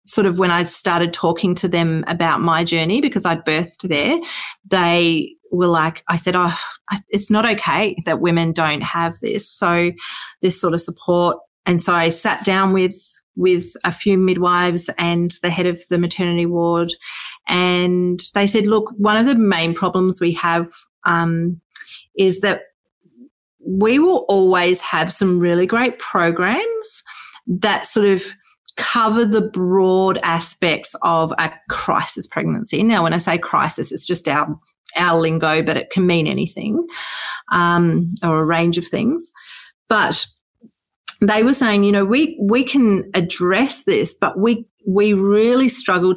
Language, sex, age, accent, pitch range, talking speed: English, female, 30-49, Australian, 170-210 Hz, 155 wpm